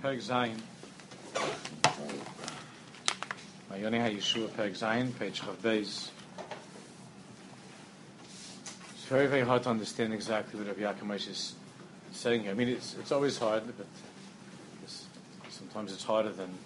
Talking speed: 90 wpm